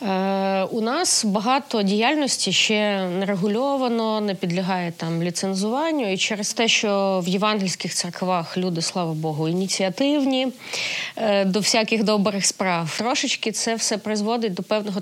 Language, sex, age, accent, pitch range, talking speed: Ukrainian, female, 30-49, native, 180-230 Hz, 130 wpm